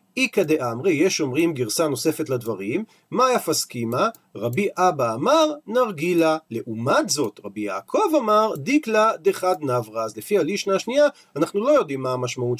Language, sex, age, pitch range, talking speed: Hebrew, male, 40-59, 150-215 Hz, 145 wpm